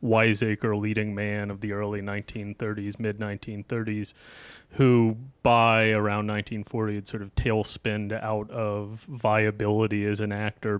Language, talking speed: English, 130 wpm